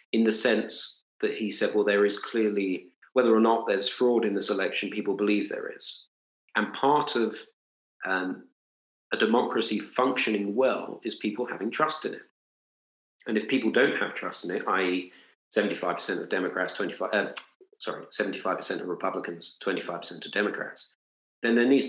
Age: 40-59